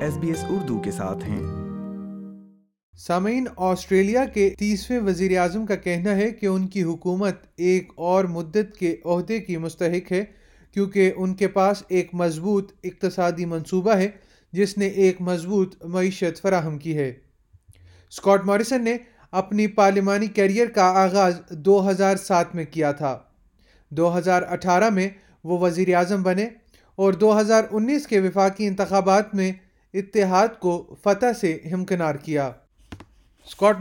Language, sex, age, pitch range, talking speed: Urdu, male, 30-49, 180-210 Hz, 130 wpm